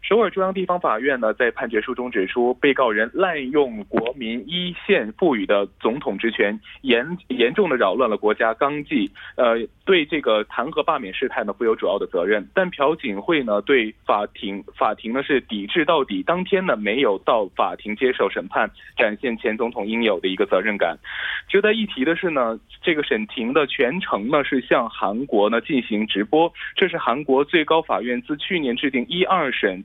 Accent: Chinese